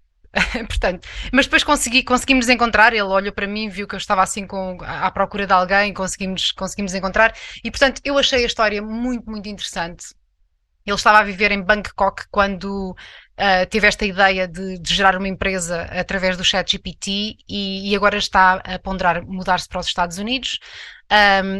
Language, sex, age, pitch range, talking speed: Portuguese, female, 20-39, 185-225 Hz, 170 wpm